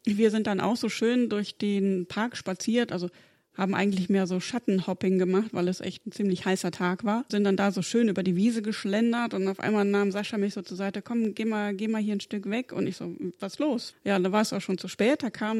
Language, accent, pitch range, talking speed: German, German, 190-220 Hz, 260 wpm